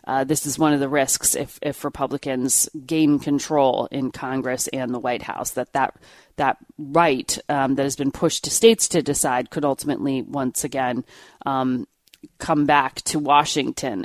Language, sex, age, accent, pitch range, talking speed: English, female, 40-59, American, 140-175 Hz, 170 wpm